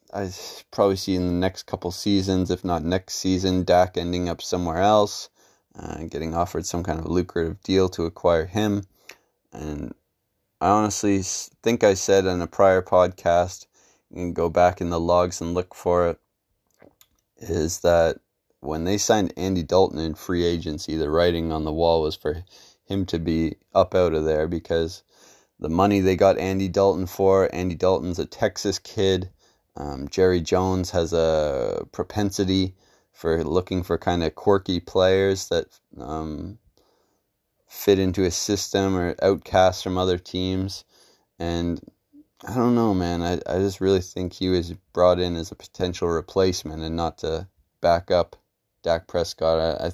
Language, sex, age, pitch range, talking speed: English, male, 20-39, 85-95 Hz, 165 wpm